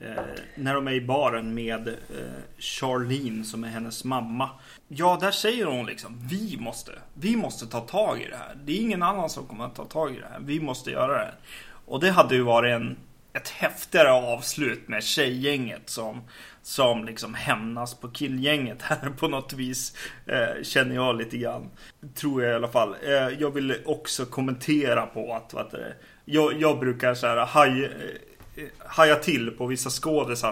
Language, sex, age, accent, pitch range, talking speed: Swedish, male, 30-49, native, 120-150 Hz, 185 wpm